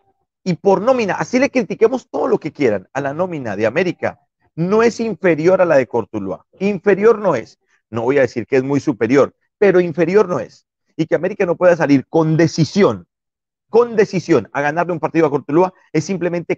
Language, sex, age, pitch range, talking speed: Spanish, male, 40-59, 140-185 Hz, 200 wpm